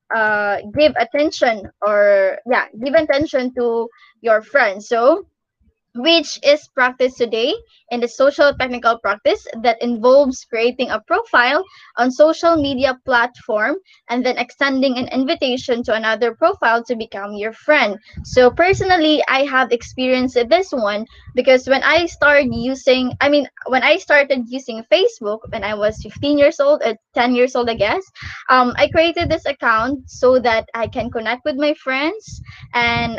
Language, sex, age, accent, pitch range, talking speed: English, female, 20-39, Filipino, 240-300 Hz, 155 wpm